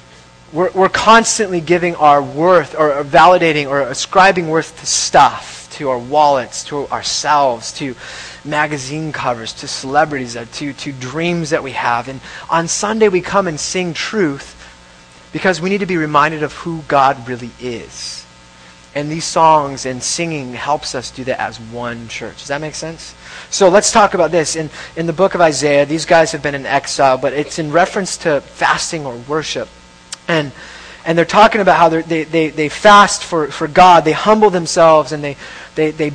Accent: American